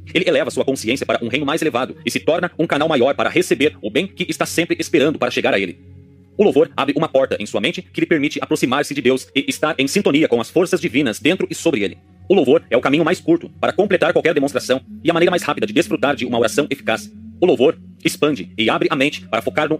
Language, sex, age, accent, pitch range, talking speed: Portuguese, male, 40-59, Brazilian, 115-170 Hz, 260 wpm